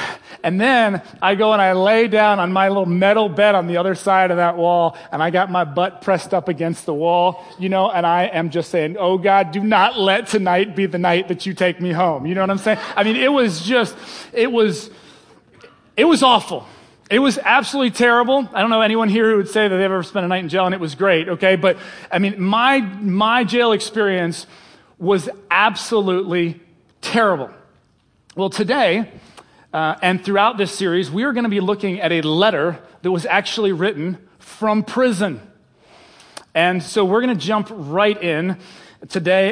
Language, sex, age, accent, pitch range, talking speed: English, male, 30-49, American, 175-205 Hz, 200 wpm